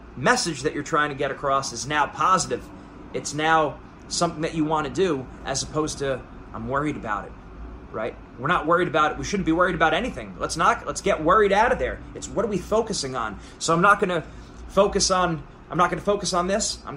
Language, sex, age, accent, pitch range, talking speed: English, male, 30-49, American, 140-180 Hz, 235 wpm